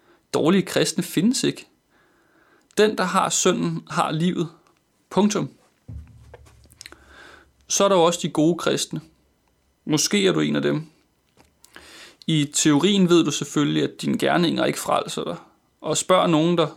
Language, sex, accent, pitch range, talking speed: Danish, male, native, 150-175 Hz, 145 wpm